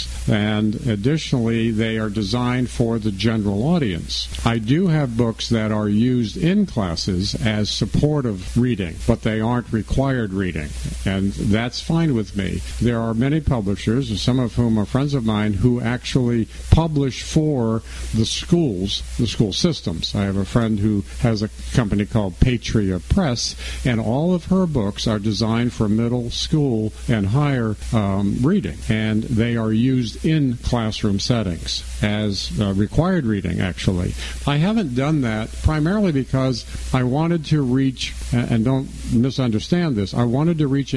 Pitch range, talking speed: 105-130 Hz, 155 wpm